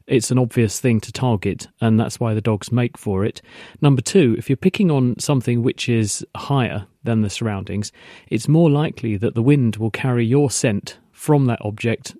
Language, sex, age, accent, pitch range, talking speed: English, male, 40-59, British, 115-135 Hz, 195 wpm